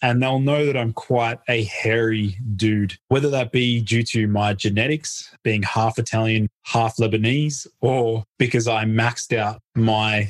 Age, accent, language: 20-39, Australian, English